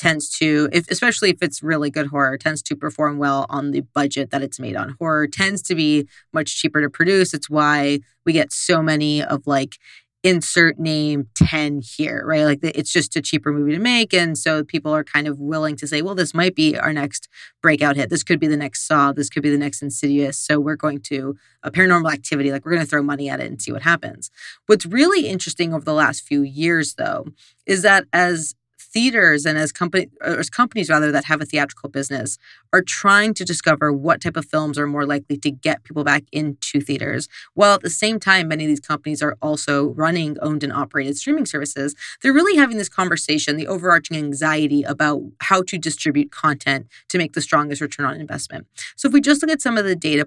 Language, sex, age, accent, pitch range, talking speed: English, female, 30-49, American, 145-170 Hz, 220 wpm